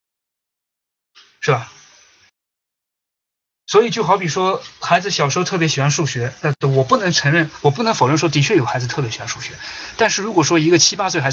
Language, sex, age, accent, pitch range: Chinese, male, 20-39, native, 125-165 Hz